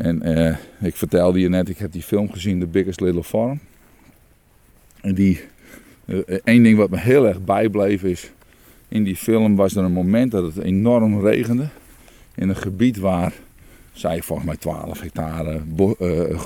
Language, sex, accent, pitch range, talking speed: Dutch, male, Dutch, 90-110 Hz, 170 wpm